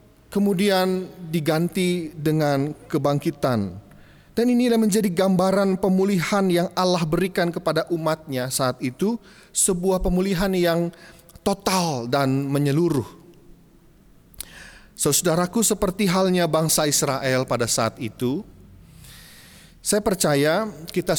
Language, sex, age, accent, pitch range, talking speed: Indonesian, male, 30-49, native, 120-175 Hz, 95 wpm